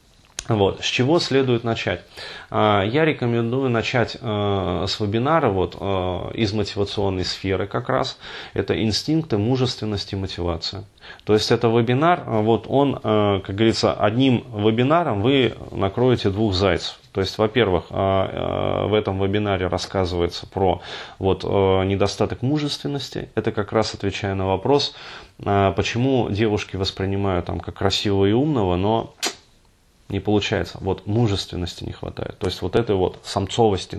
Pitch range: 95-120 Hz